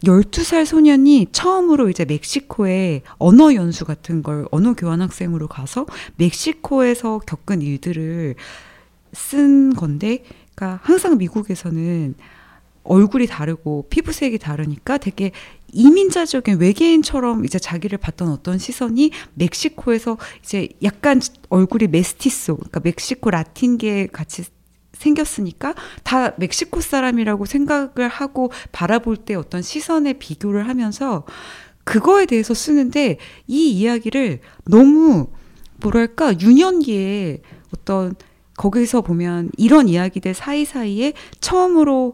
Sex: female